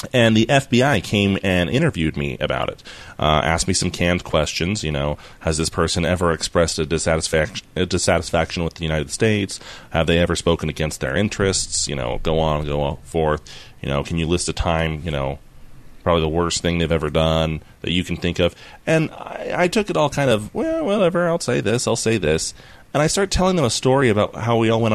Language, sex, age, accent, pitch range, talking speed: English, male, 30-49, American, 80-115 Hz, 225 wpm